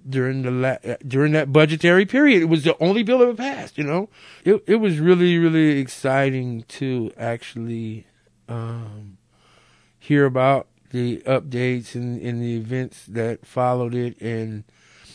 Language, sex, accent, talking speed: English, male, American, 145 wpm